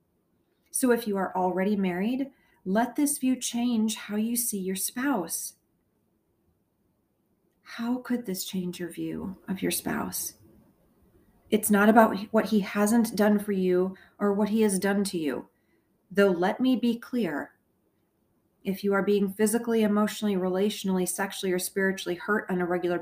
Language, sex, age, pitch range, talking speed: English, female, 40-59, 185-215 Hz, 155 wpm